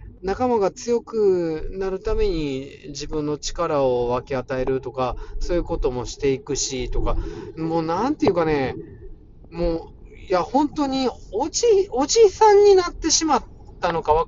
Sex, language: male, Japanese